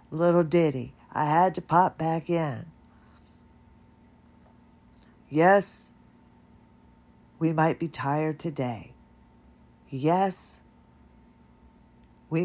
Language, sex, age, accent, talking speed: English, female, 50-69, American, 75 wpm